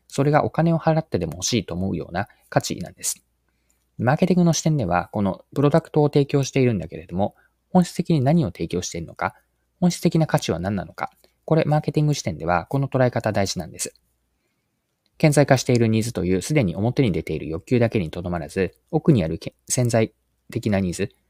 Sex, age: male, 20-39